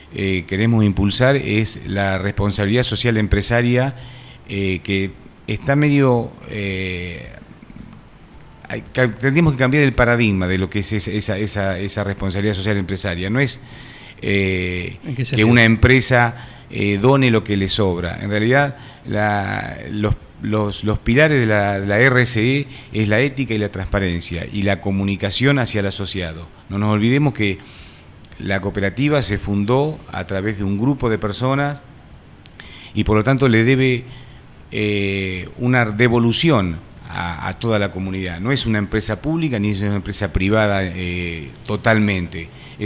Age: 40-59